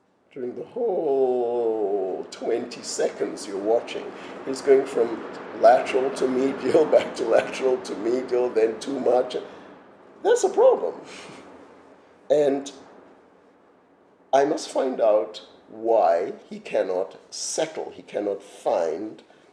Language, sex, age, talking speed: English, male, 50-69, 110 wpm